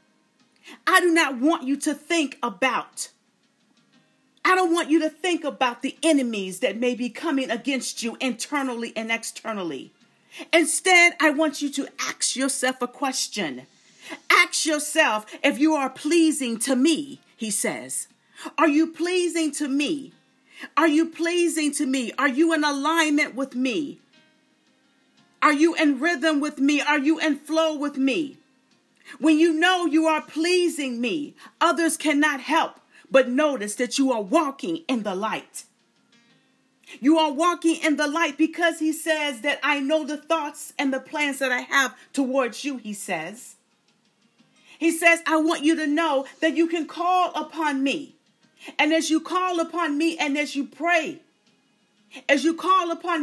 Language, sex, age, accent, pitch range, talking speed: English, female, 40-59, American, 265-320 Hz, 160 wpm